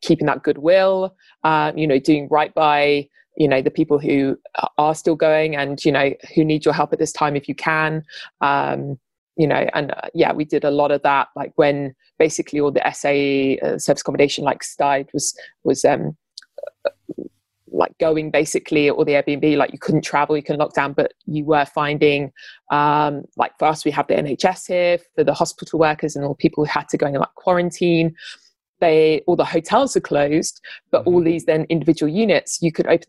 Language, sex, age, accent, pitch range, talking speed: English, female, 20-39, British, 145-170 Hz, 200 wpm